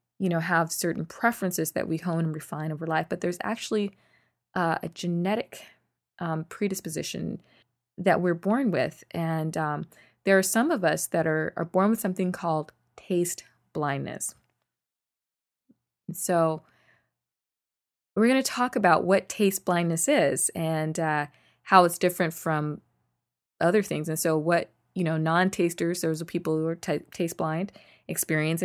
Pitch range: 155-190 Hz